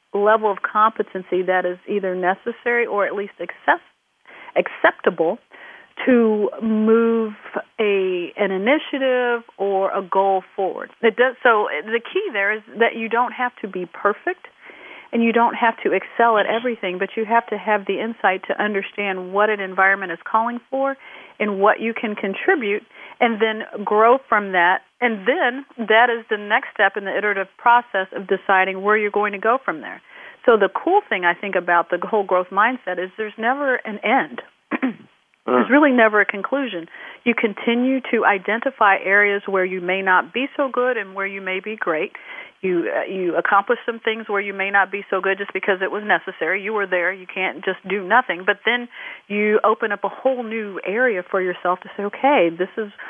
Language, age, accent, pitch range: English, 40-59, American, 190-235 Hz